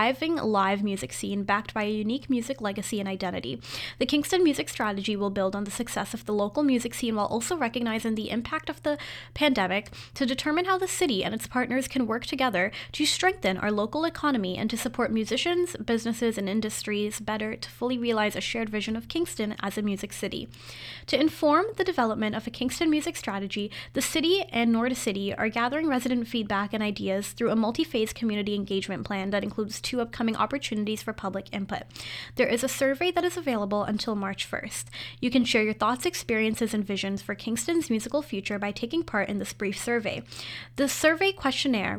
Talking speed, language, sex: 190 wpm, English, female